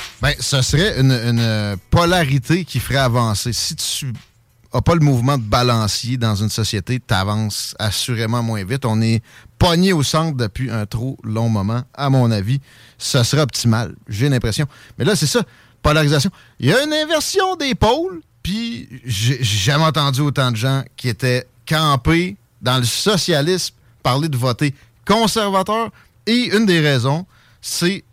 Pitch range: 115-150 Hz